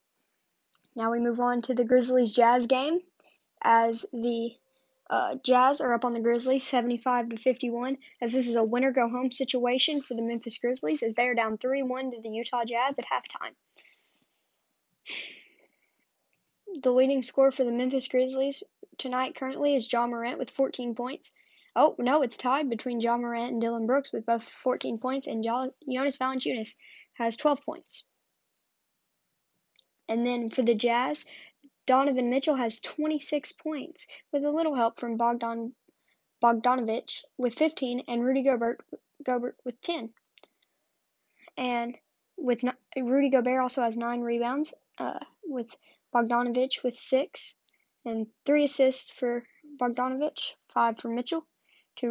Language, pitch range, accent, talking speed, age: English, 235-270 Hz, American, 145 wpm, 10-29